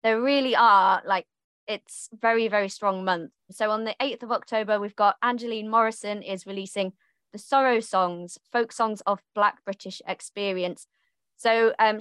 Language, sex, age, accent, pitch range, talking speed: English, female, 20-39, British, 190-235 Hz, 160 wpm